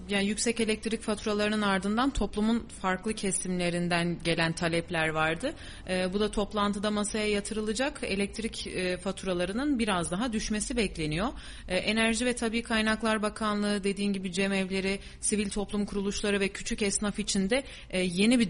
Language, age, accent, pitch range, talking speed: Turkish, 30-49, native, 180-215 Hz, 145 wpm